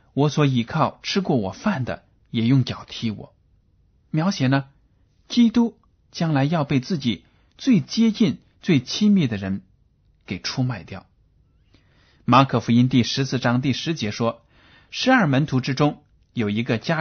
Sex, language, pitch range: male, Chinese, 105-135 Hz